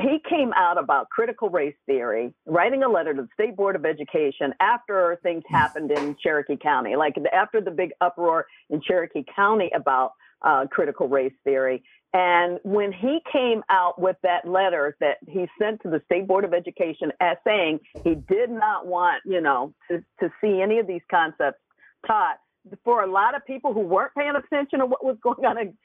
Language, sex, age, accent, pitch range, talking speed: English, female, 50-69, American, 160-240 Hz, 195 wpm